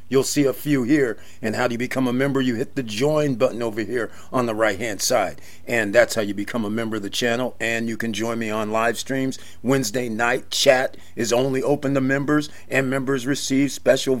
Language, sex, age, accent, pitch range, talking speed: English, male, 50-69, American, 125-145 Hz, 230 wpm